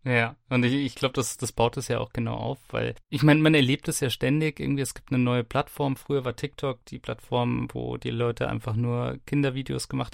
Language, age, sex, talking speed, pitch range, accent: German, 30-49, male, 230 wpm, 120-140 Hz, German